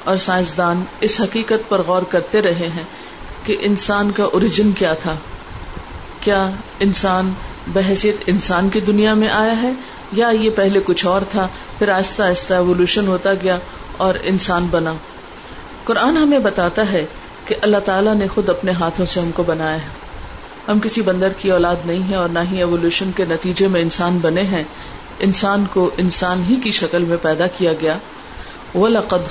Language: Urdu